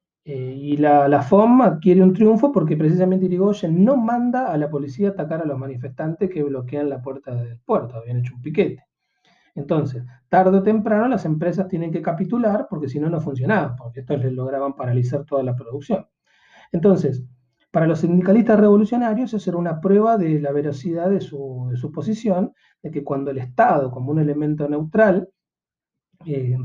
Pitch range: 130-180 Hz